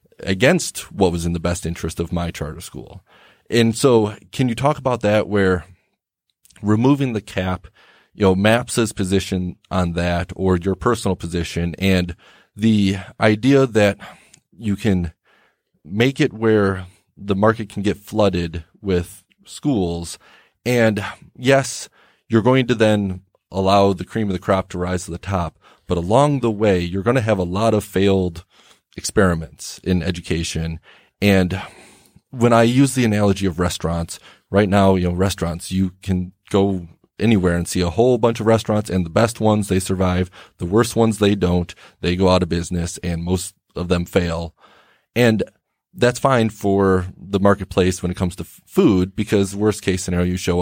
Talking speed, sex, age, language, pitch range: 170 wpm, male, 30-49, English, 90-110 Hz